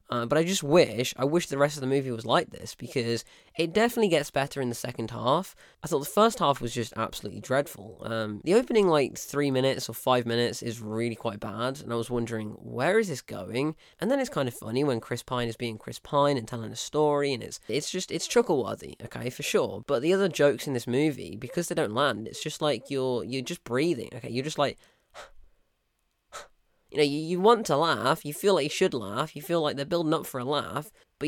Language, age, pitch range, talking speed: English, 10-29, 115-155 Hz, 240 wpm